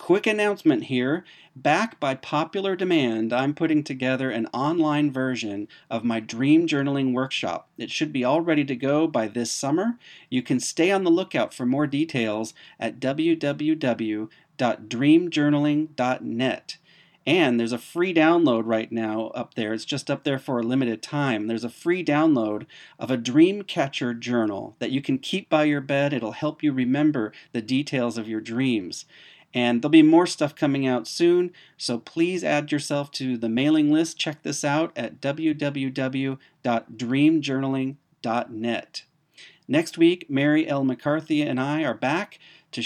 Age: 40-59